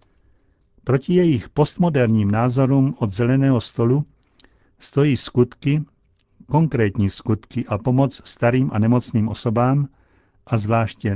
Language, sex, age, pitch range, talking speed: Czech, male, 60-79, 110-135 Hz, 100 wpm